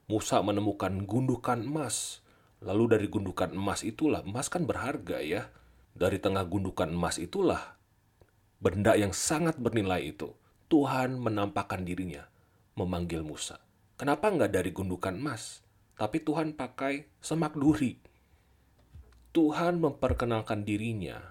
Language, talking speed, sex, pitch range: Indonesian, 115 wpm, male, 100-145 Hz